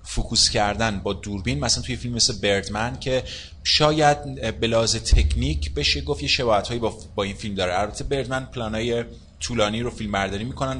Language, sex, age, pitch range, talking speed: Persian, male, 30-49, 95-120 Hz, 180 wpm